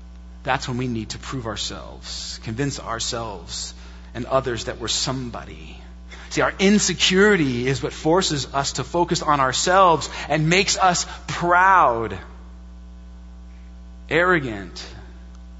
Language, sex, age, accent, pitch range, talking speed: English, male, 30-49, American, 120-195 Hz, 115 wpm